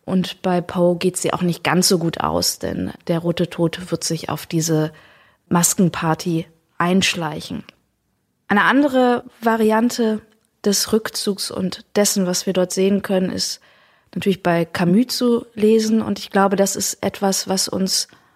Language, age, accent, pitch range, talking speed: German, 20-39, German, 190-220 Hz, 155 wpm